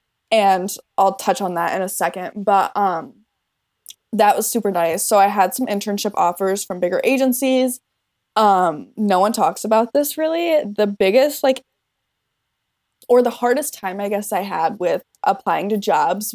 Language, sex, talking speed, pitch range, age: English, female, 165 wpm, 190-225 Hz, 20-39